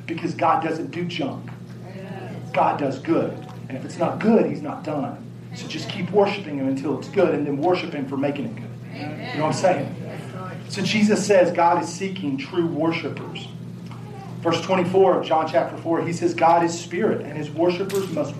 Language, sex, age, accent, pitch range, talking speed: English, male, 40-59, American, 155-210 Hz, 195 wpm